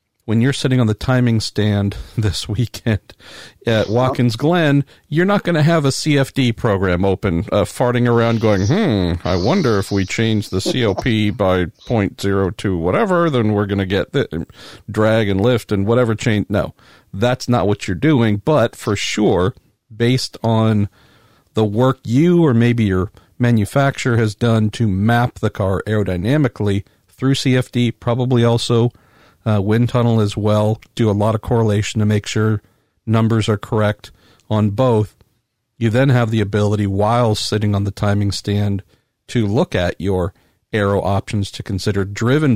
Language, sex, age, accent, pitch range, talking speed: English, male, 50-69, American, 100-120 Hz, 165 wpm